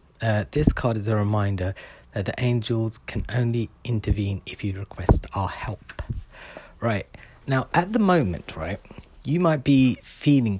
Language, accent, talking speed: English, British, 155 wpm